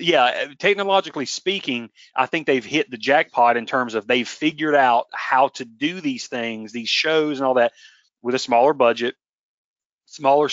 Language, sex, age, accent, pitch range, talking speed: English, male, 30-49, American, 125-170 Hz, 170 wpm